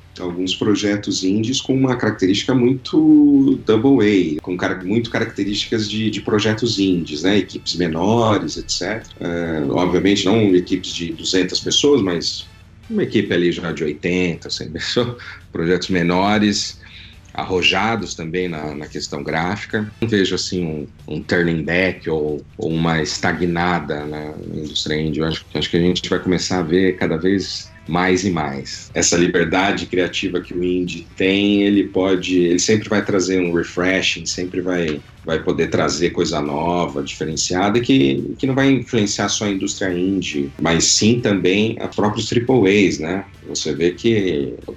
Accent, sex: Brazilian, male